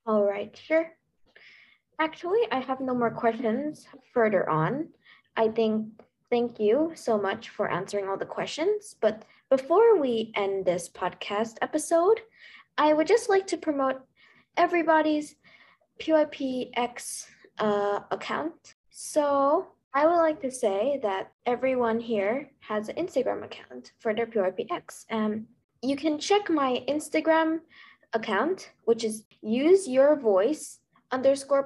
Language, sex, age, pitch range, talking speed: English, female, 20-39, 220-310 Hz, 130 wpm